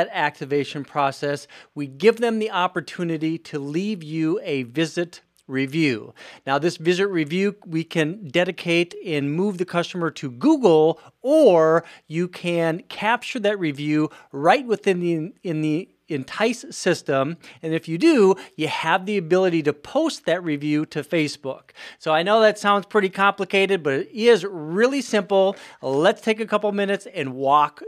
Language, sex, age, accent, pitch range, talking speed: English, male, 40-59, American, 145-195 Hz, 155 wpm